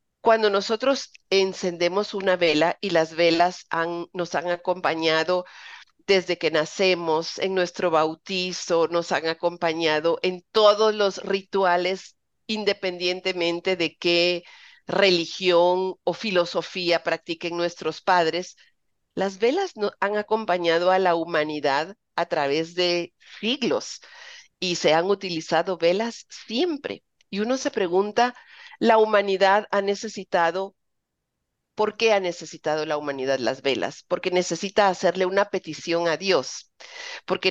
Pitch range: 170-200 Hz